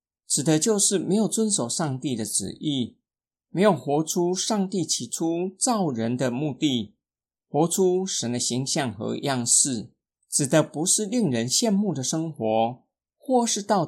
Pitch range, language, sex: 130-205 Hz, Chinese, male